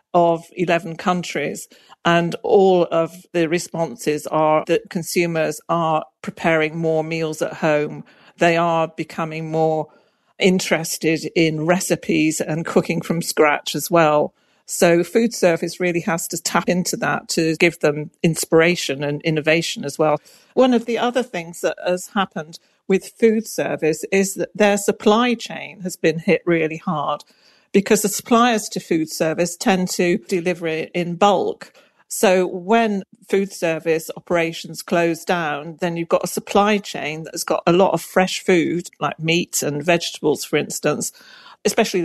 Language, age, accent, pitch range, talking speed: English, 50-69, British, 165-200 Hz, 155 wpm